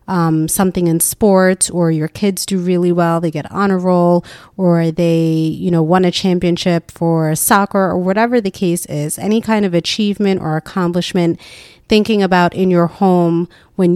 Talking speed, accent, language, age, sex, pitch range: 175 wpm, American, English, 30-49, female, 170-200 Hz